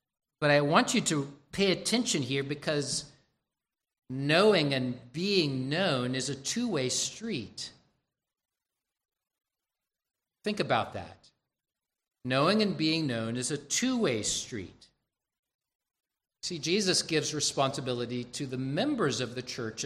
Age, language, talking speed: 50-69, English, 115 wpm